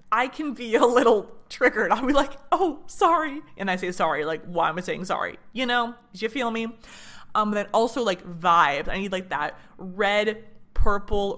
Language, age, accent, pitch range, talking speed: English, 20-39, American, 190-240 Hz, 195 wpm